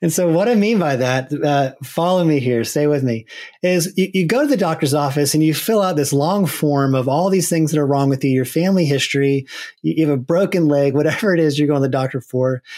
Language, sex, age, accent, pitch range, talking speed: English, male, 30-49, American, 135-175 Hz, 265 wpm